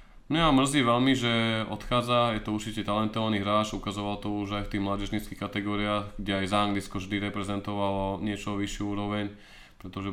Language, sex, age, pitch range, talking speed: Slovak, male, 20-39, 100-115 Hz, 170 wpm